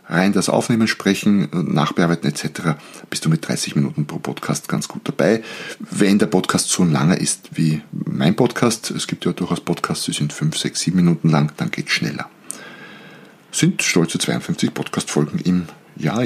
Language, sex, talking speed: German, male, 175 wpm